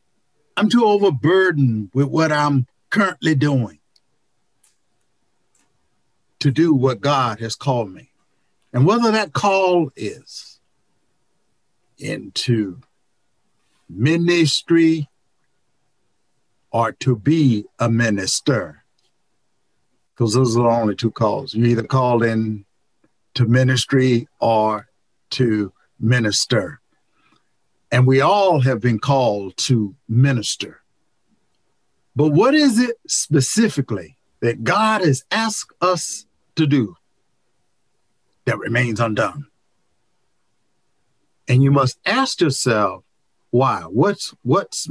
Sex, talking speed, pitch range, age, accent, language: male, 100 wpm, 115-150 Hz, 60-79, American, English